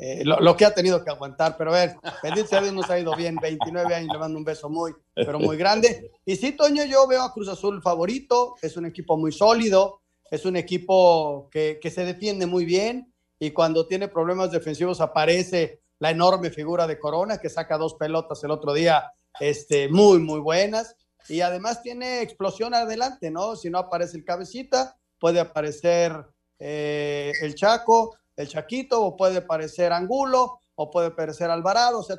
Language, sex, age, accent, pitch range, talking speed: Spanish, male, 40-59, Mexican, 160-205 Hz, 185 wpm